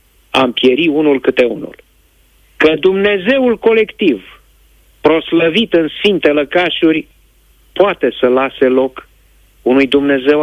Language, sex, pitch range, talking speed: Romanian, male, 105-160 Hz, 105 wpm